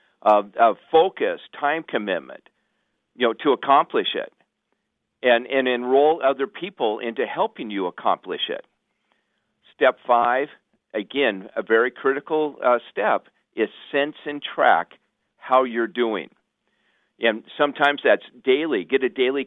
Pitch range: 120-150 Hz